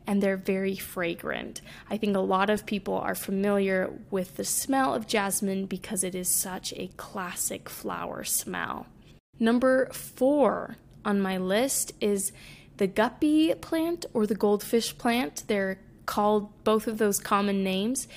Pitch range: 195-235 Hz